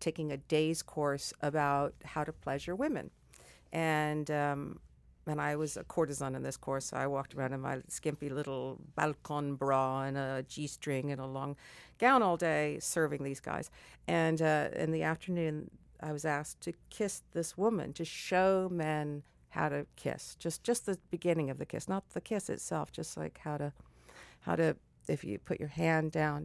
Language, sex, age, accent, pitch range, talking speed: English, female, 50-69, American, 135-165 Hz, 185 wpm